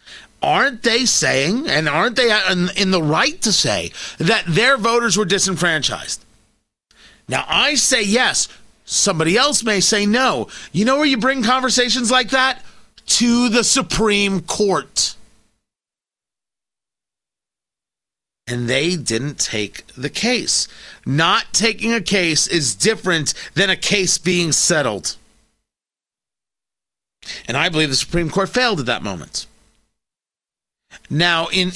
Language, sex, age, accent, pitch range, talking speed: English, male, 40-59, American, 155-220 Hz, 125 wpm